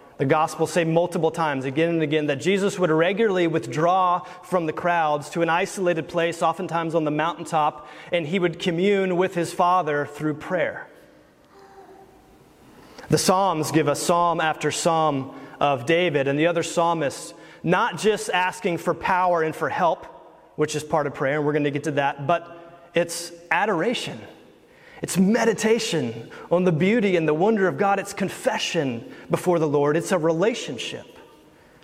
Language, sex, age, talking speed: English, male, 30-49, 165 wpm